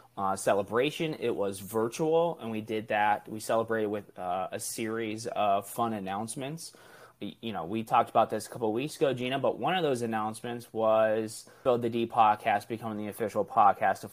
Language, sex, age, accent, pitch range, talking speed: English, male, 20-39, American, 105-120 Hz, 190 wpm